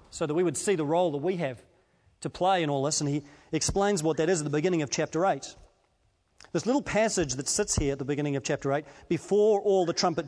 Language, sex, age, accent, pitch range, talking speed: English, male, 30-49, Australian, 155-195 Hz, 250 wpm